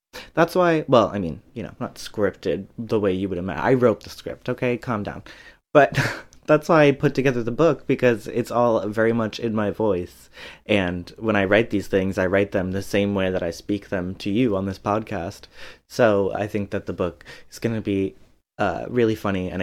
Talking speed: 215 wpm